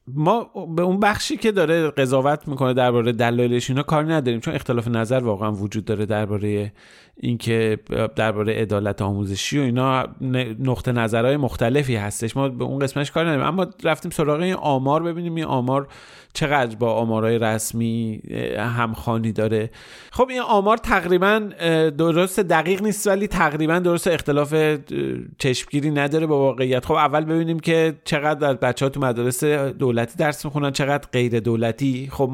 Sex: male